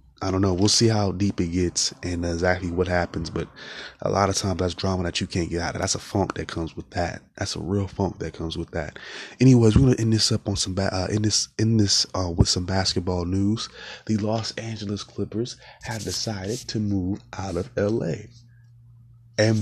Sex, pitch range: male, 95-115 Hz